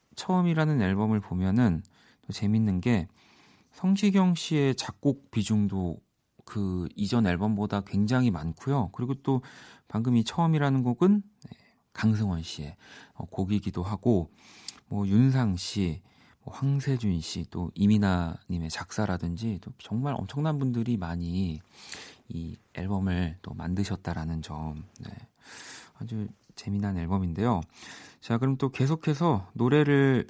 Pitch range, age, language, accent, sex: 95-135 Hz, 40-59, Korean, native, male